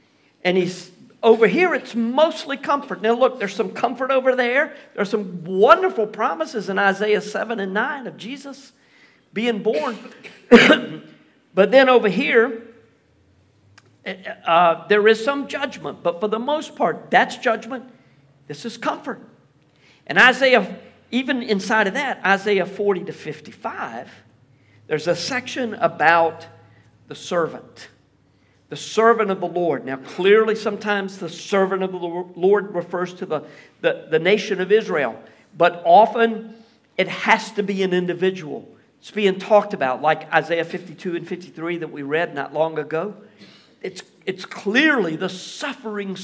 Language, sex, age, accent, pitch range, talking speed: English, male, 50-69, American, 175-245 Hz, 145 wpm